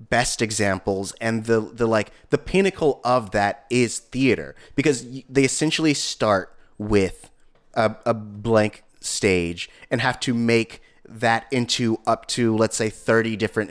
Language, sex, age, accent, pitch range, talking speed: English, male, 30-49, American, 110-125 Hz, 145 wpm